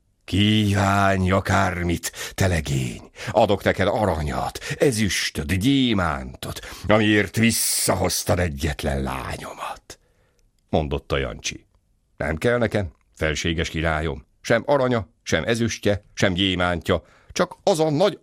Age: 60-79